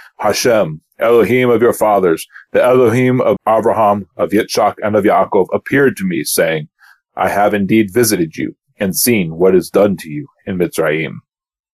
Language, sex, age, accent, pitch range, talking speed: English, male, 40-59, American, 100-120 Hz, 165 wpm